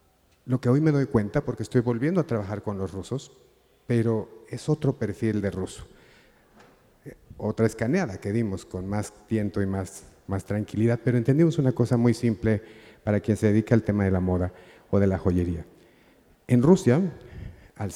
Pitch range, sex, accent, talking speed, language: 100-120 Hz, male, Mexican, 175 wpm, Spanish